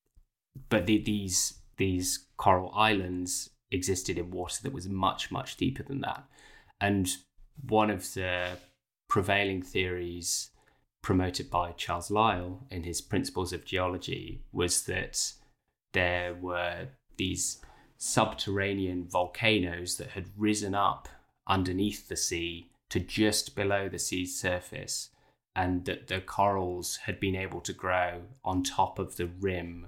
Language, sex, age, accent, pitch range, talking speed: English, male, 20-39, British, 90-100 Hz, 130 wpm